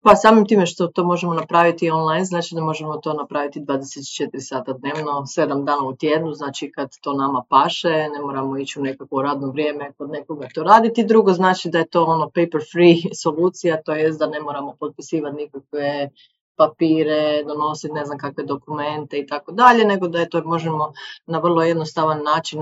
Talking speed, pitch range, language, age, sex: 185 wpm, 145-170 Hz, Croatian, 30-49, female